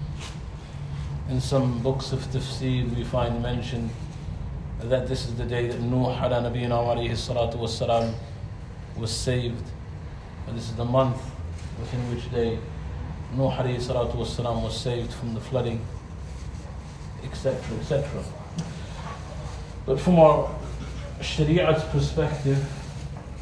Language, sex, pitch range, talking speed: English, male, 120-135 Hz, 125 wpm